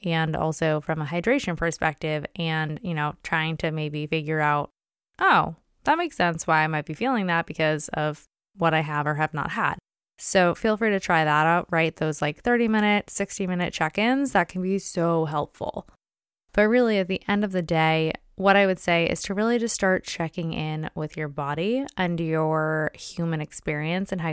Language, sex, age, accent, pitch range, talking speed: English, female, 20-39, American, 160-210 Hz, 200 wpm